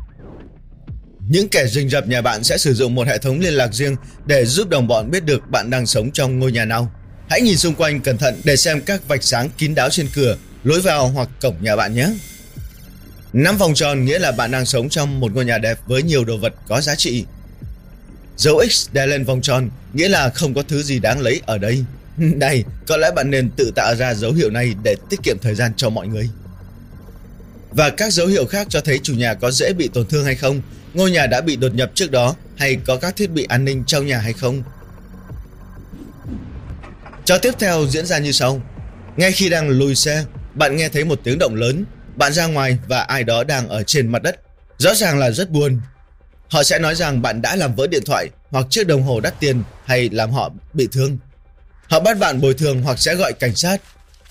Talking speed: 230 wpm